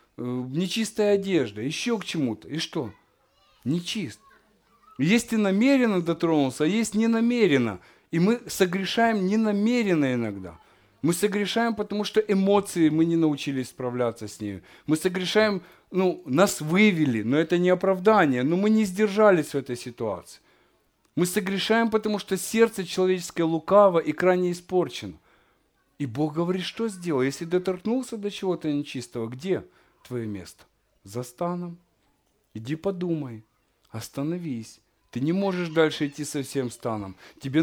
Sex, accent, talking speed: male, native, 135 wpm